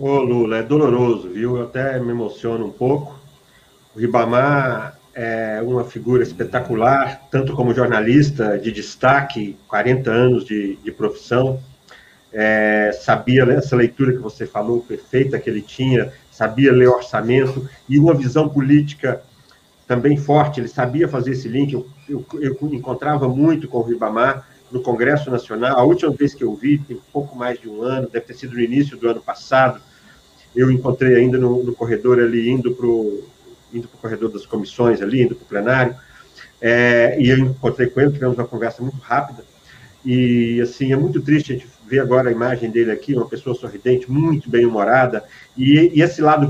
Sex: male